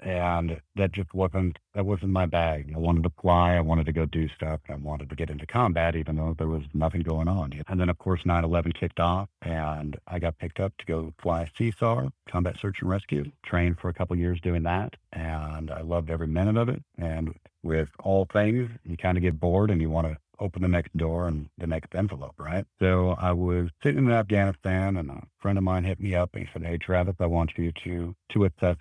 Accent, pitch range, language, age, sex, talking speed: American, 80-95 Hz, English, 50-69, male, 235 wpm